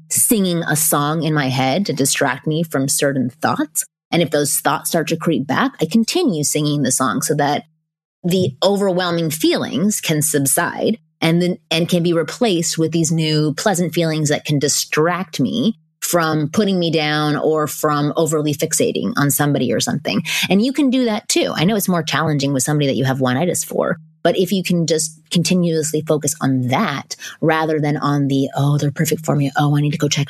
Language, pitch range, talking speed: English, 145-180 Hz, 200 wpm